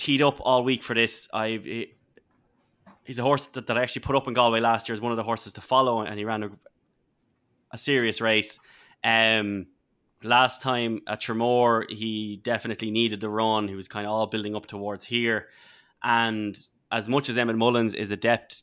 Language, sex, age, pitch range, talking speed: English, male, 20-39, 105-120 Hz, 195 wpm